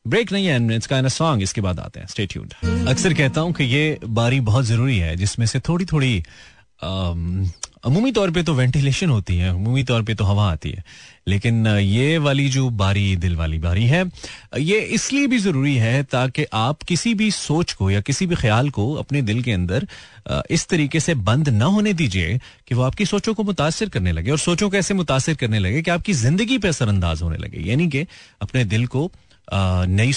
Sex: male